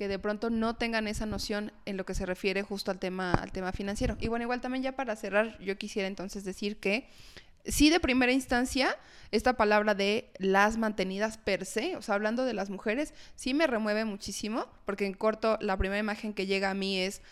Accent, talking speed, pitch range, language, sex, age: Mexican, 215 wpm, 200-240 Hz, Spanish, female, 20-39